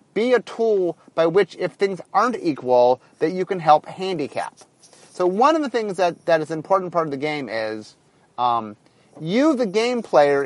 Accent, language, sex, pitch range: American, English, male, 145-200 Hz